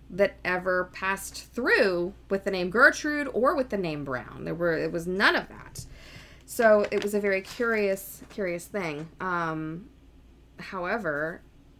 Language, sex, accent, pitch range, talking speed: English, female, American, 155-210 Hz, 155 wpm